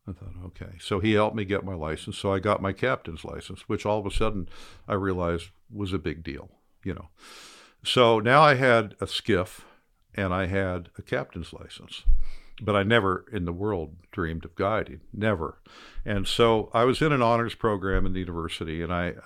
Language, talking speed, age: English, 200 wpm, 60-79